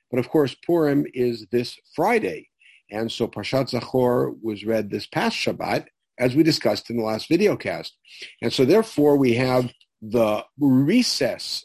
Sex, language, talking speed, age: male, English, 155 wpm, 50-69